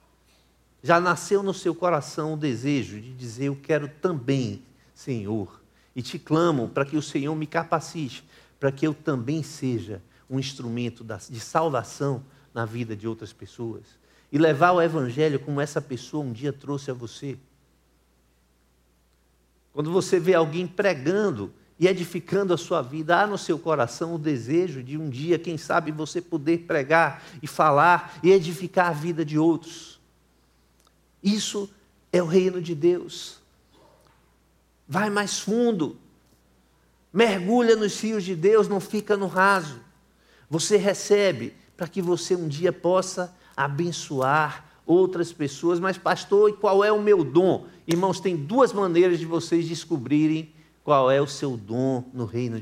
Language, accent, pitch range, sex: Portuguese, Brazilian, 130-180 Hz, male